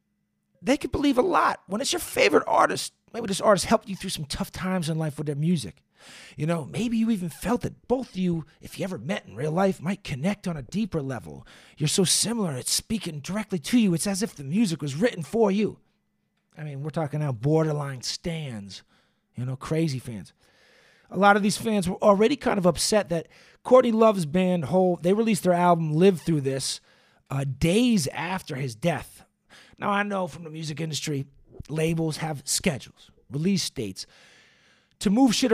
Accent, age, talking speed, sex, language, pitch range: American, 40-59, 195 wpm, male, English, 155-200 Hz